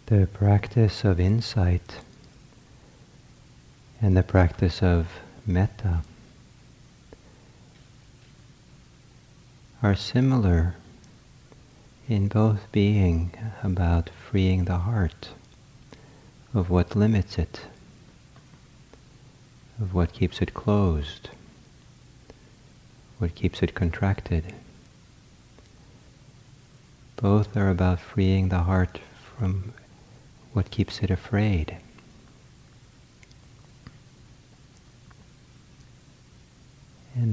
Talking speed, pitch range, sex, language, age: 70 wpm, 90-120 Hz, male, English, 50-69